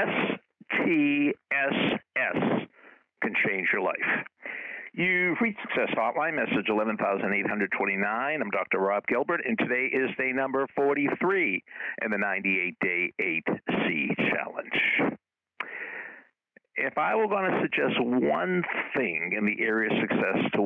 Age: 60-79